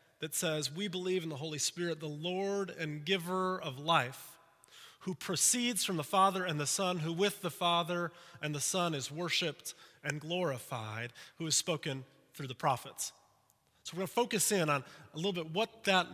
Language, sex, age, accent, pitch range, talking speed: English, male, 30-49, American, 155-205 Hz, 190 wpm